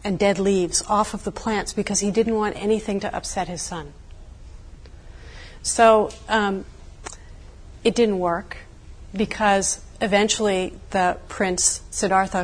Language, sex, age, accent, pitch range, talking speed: English, female, 40-59, American, 180-220 Hz, 125 wpm